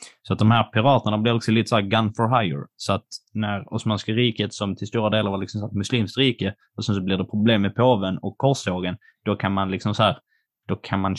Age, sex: 20-39, male